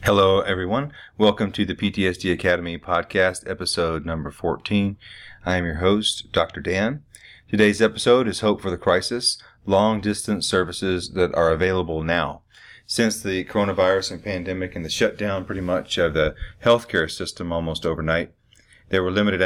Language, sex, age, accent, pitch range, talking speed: English, male, 30-49, American, 85-100 Hz, 150 wpm